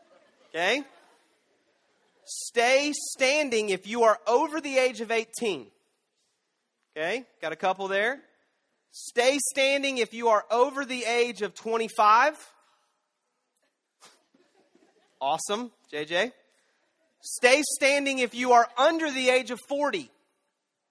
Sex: male